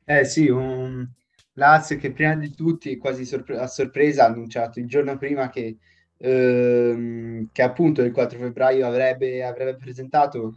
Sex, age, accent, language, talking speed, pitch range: male, 20-39, native, Italian, 155 wpm, 115-130 Hz